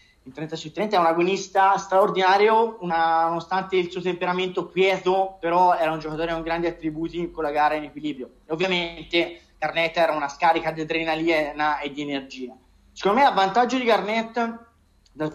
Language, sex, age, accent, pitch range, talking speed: Italian, male, 30-49, native, 155-195 Hz, 170 wpm